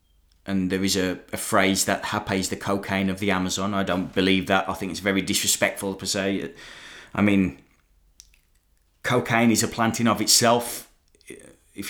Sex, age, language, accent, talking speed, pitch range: male, 20-39, English, British, 170 wpm, 95-120 Hz